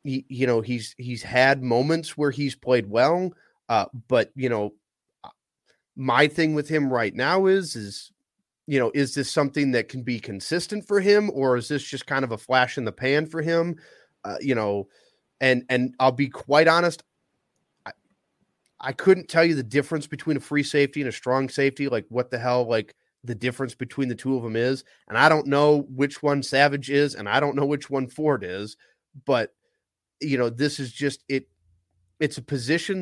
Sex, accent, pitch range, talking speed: male, American, 125-155 Hz, 200 wpm